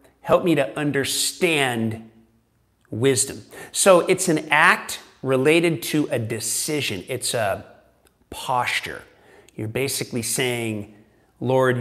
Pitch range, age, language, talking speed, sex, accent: 120-150 Hz, 40-59, English, 100 wpm, male, American